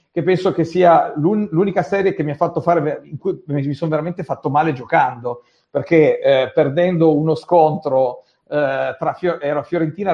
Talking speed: 160 wpm